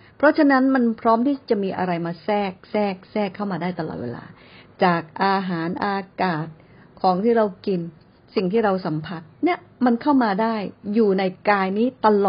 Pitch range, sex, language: 180-250 Hz, female, Thai